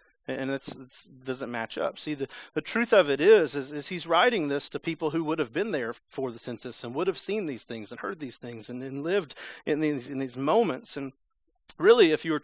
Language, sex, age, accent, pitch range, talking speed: English, male, 40-59, American, 120-155 Hz, 245 wpm